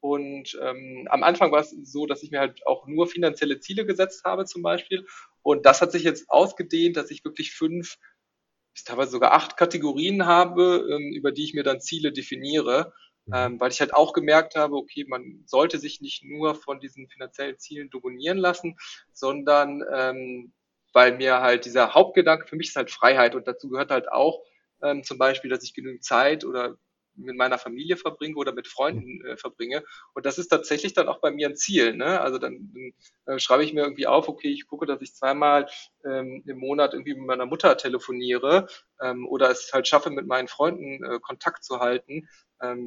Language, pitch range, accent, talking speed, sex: German, 130-165 Hz, German, 195 wpm, male